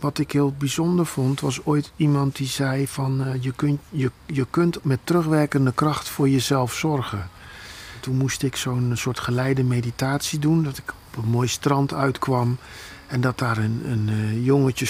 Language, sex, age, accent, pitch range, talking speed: Dutch, male, 50-69, Dutch, 115-145 Hz, 175 wpm